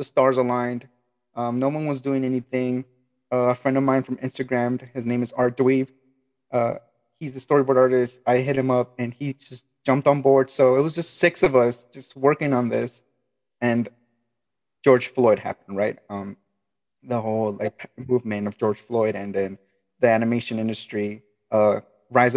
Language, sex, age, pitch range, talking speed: English, male, 20-39, 115-130 Hz, 180 wpm